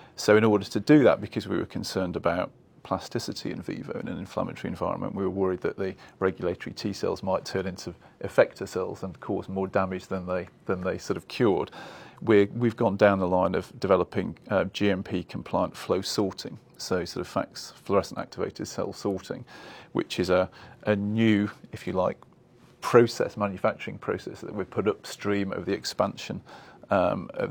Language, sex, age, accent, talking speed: English, male, 40-59, British, 180 wpm